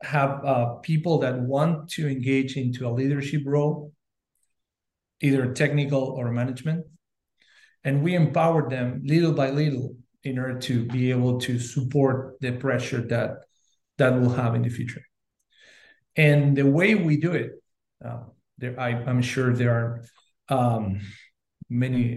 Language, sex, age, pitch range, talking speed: English, male, 40-59, 125-145 Hz, 140 wpm